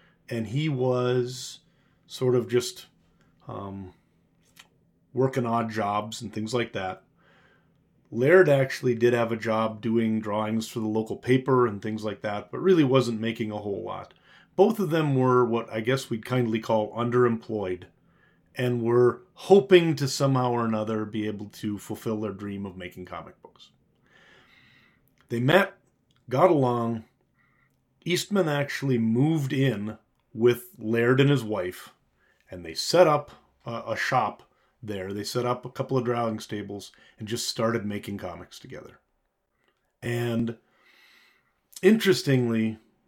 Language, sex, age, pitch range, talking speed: English, male, 30-49, 110-130 Hz, 140 wpm